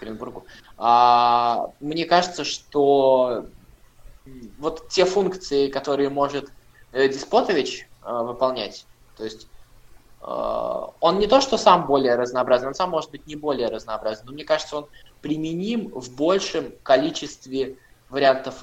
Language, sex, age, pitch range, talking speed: Russian, male, 20-39, 120-155 Hz, 120 wpm